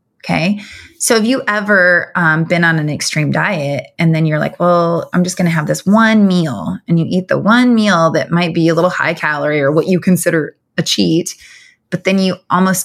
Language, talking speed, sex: English, 220 wpm, female